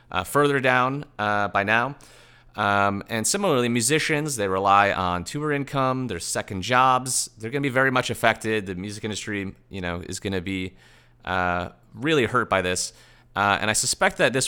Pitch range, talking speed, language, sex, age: 100-125 Hz, 180 wpm, English, male, 30-49